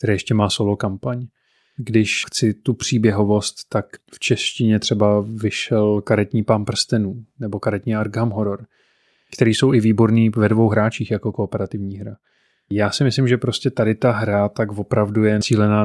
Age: 30-49